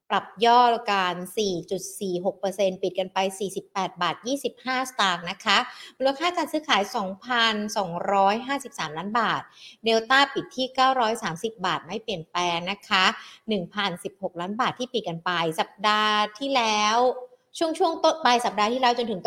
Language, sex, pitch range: Thai, female, 190-240 Hz